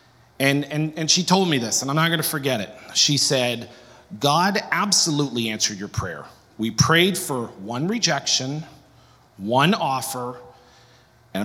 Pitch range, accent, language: 115-165 Hz, American, English